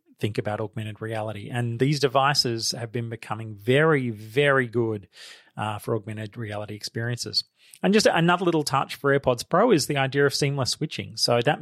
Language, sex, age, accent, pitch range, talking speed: English, male, 30-49, Australian, 115-150 Hz, 175 wpm